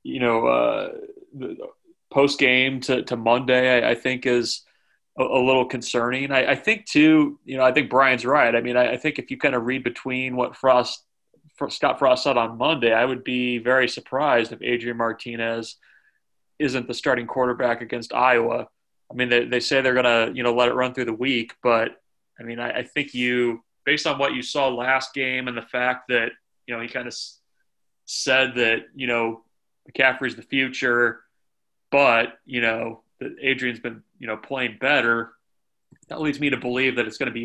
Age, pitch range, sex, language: 20-39, 120-135 Hz, male, English